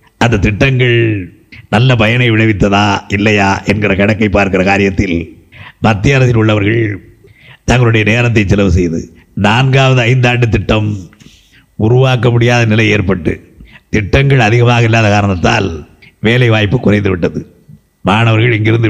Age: 50-69